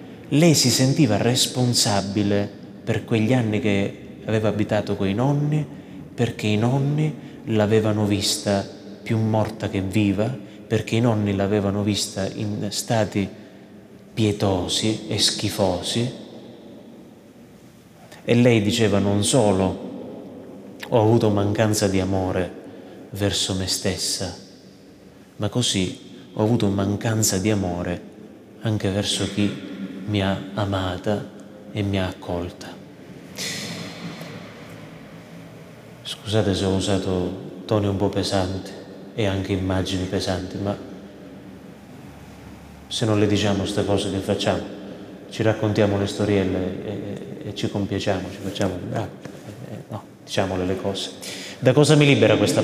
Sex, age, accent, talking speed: male, 30-49, native, 120 wpm